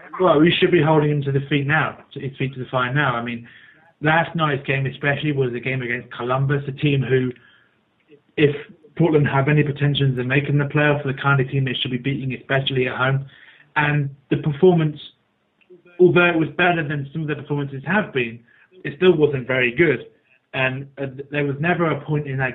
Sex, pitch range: male, 130-150 Hz